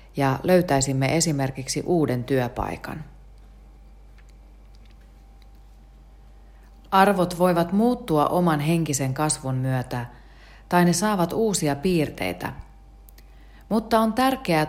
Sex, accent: female, native